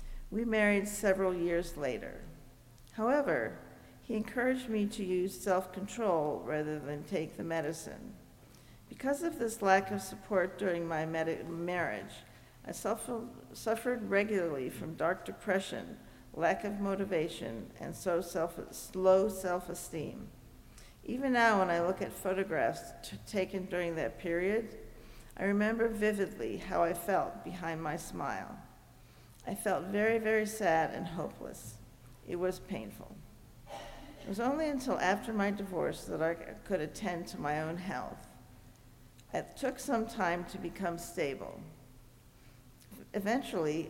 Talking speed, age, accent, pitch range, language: 125 wpm, 50-69, American, 165-210 Hz, English